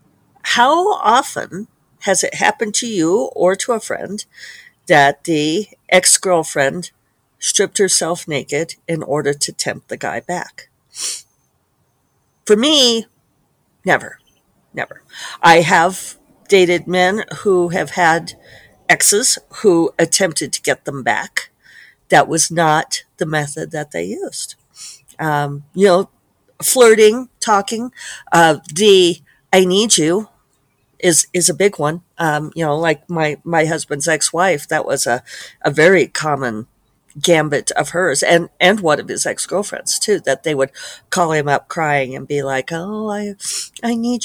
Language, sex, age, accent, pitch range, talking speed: English, female, 50-69, American, 145-205 Hz, 140 wpm